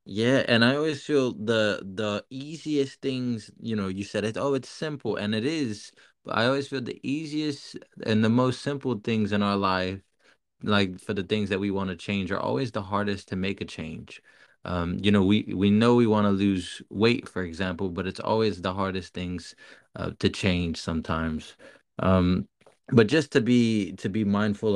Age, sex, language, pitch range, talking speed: 20-39, male, English, 95-115 Hz, 200 wpm